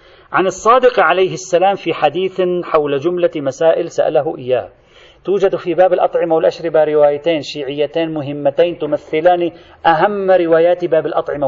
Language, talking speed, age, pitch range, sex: Arabic, 125 wpm, 40-59, 150-185 Hz, male